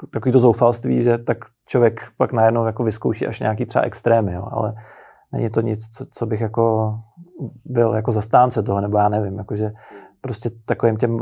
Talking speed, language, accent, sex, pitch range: 180 wpm, Czech, native, male, 115-125 Hz